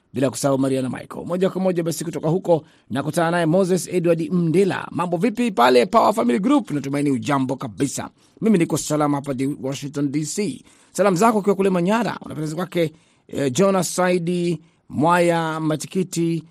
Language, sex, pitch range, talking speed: Swahili, male, 145-185 Hz, 150 wpm